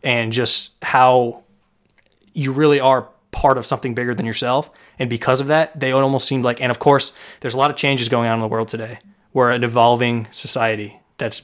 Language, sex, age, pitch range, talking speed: English, male, 20-39, 120-140 Hz, 205 wpm